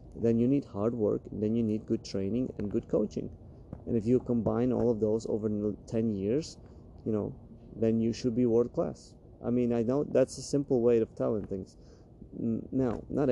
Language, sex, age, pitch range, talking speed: English, male, 30-49, 100-120 Hz, 200 wpm